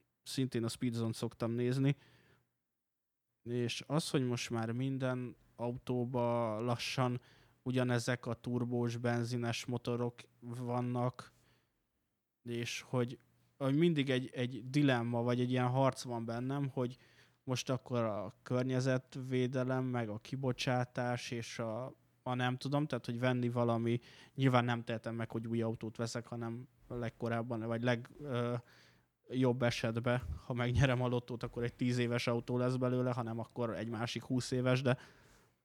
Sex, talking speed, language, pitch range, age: male, 140 wpm, Hungarian, 115-130 Hz, 20-39